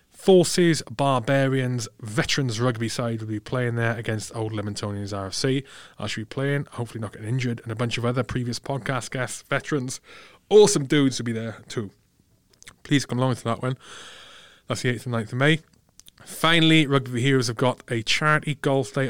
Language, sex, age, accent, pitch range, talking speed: English, male, 20-39, British, 110-130 Hz, 180 wpm